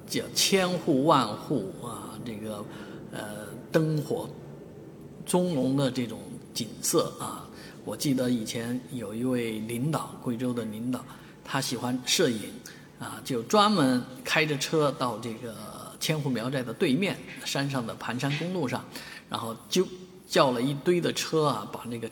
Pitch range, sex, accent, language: 125-170 Hz, male, native, Chinese